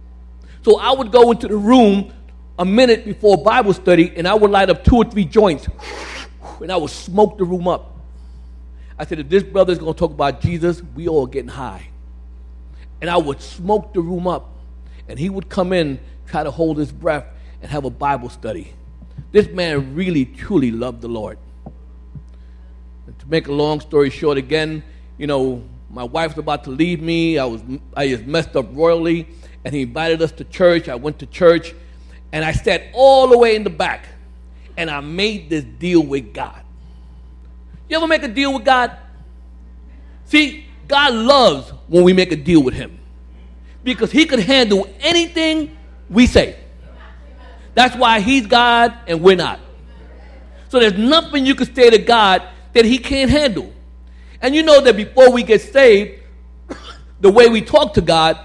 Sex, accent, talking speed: male, American, 180 wpm